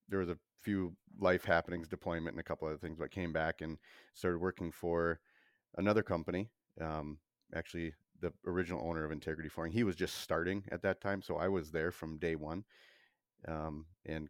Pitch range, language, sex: 80-90 Hz, English, male